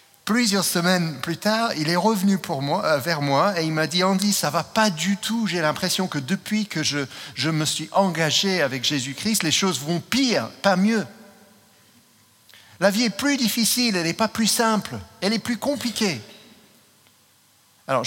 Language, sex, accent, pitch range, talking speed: French, male, French, 130-190 Hz, 185 wpm